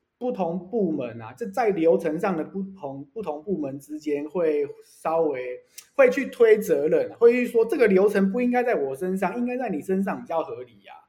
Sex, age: male, 20-39